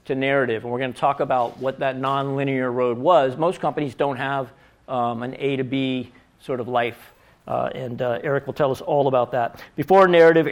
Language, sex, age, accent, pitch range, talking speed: English, male, 50-69, American, 125-150 Hz, 210 wpm